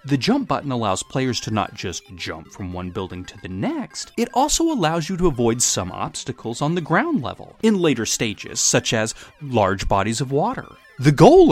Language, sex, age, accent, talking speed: English, male, 30-49, American, 200 wpm